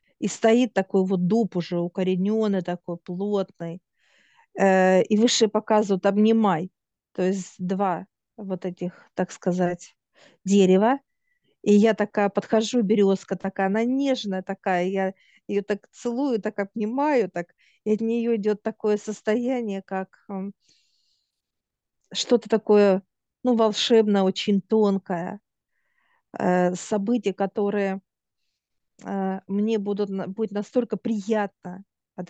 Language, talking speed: Russian, 110 wpm